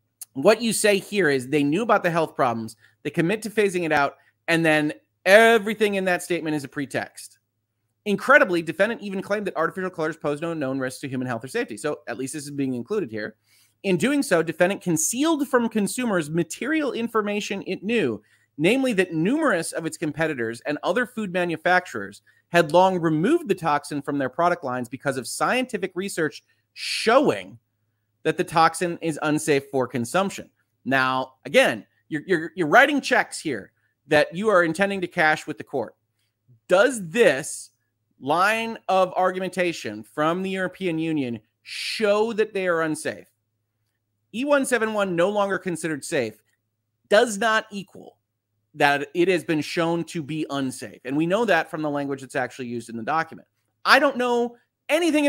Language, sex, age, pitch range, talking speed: English, male, 30-49, 130-195 Hz, 170 wpm